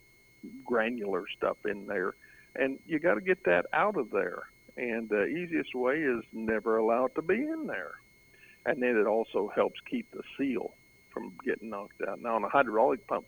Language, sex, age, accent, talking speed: English, male, 50-69, American, 190 wpm